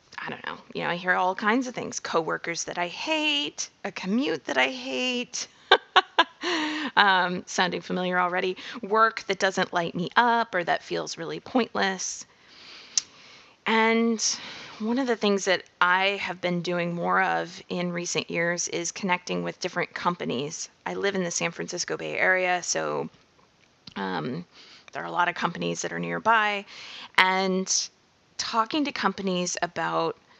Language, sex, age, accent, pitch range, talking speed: English, female, 20-39, American, 175-215 Hz, 155 wpm